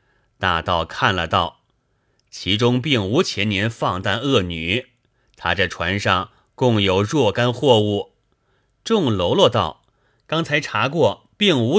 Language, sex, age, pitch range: Chinese, male, 30-49, 100-140 Hz